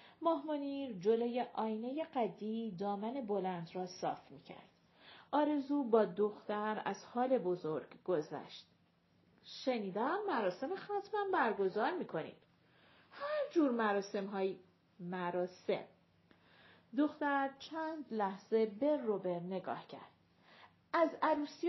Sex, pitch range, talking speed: female, 215-300 Hz, 95 wpm